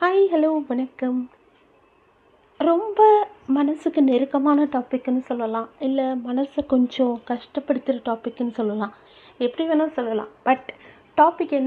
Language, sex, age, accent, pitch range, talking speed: Tamil, female, 30-49, native, 235-295 Hz, 110 wpm